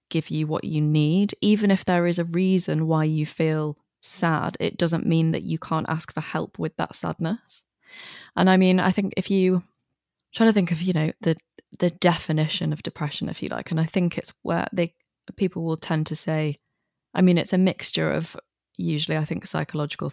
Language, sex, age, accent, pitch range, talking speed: English, female, 20-39, British, 150-180 Hz, 205 wpm